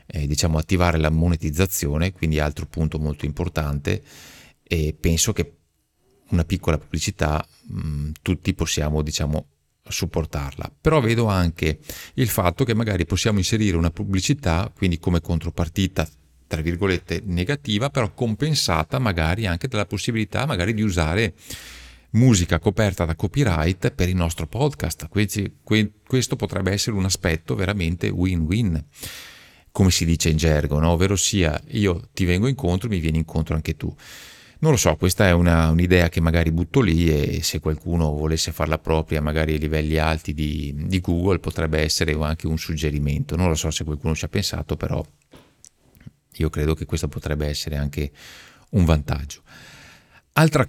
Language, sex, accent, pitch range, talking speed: Italian, male, native, 80-105 Hz, 150 wpm